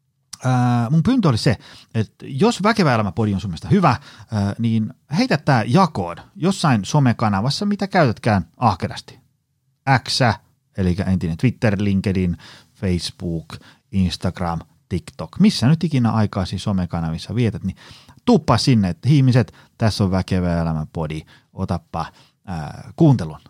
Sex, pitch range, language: male, 95-135 Hz, Finnish